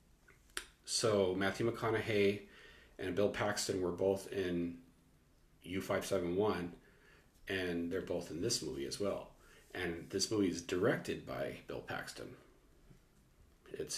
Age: 40-59